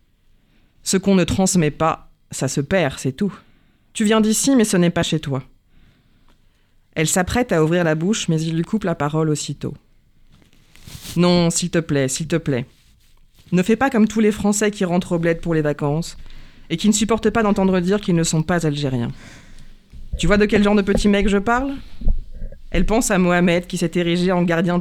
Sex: female